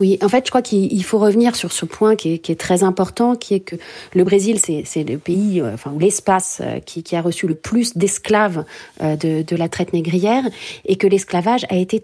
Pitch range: 185-240 Hz